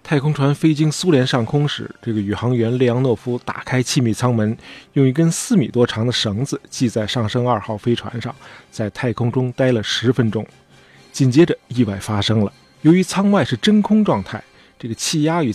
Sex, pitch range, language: male, 115-145 Hz, Chinese